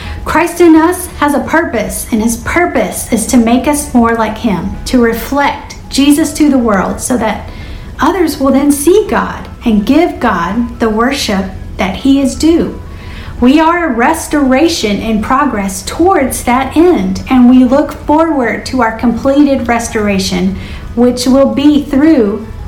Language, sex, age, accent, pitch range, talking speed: English, female, 50-69, American, 215-285 Hz, 155 wpm